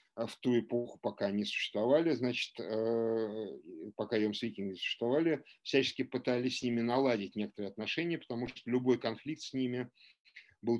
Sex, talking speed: male, 140 wpm